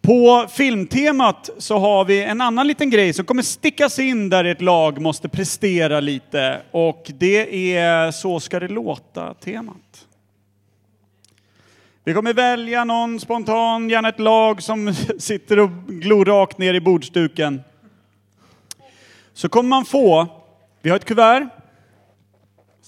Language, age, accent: Swedish, 30-49, native